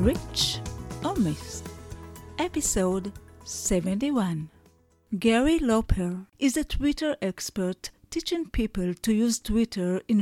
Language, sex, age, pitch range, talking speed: English, female, 40-59, 195-260 Hz, 100 wpm